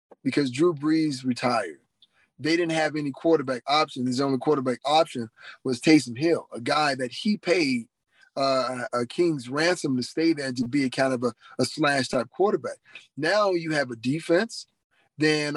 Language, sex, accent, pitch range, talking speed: English, male, American, 140-170 Hz, 175 wpm